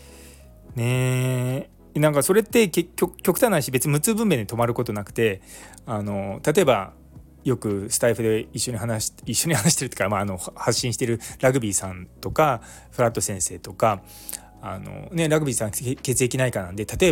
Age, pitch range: 20-39, 100-145 Hz